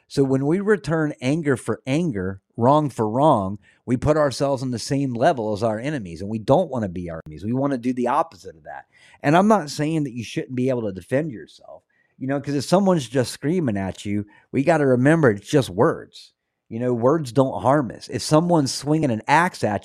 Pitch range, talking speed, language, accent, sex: 110-145 Hz, 230 wpm, English, American, male